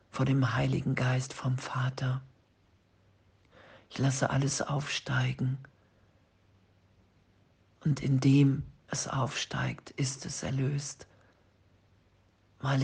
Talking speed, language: 85 wpm, German